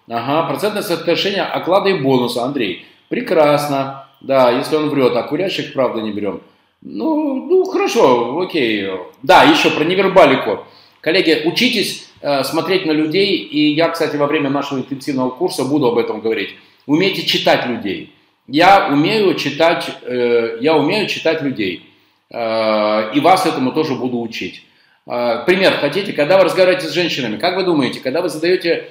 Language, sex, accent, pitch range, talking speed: Russian, male, native, 125-165 Hz, 155 wpm